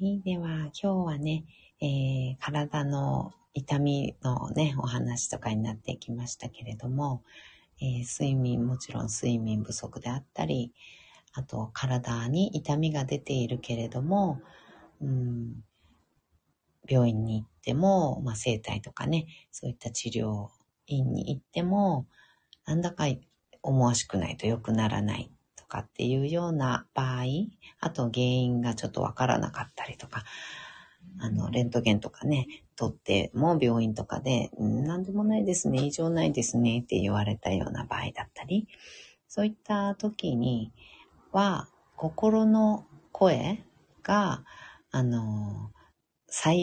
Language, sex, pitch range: Japanese, female, 120-165 Hz